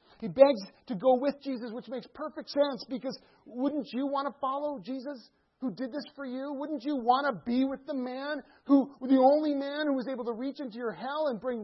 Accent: American